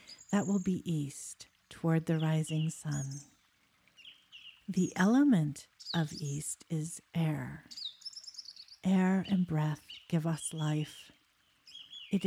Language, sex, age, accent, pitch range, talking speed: English, female, 50-69, American, 155-185 Hz, 105 wpm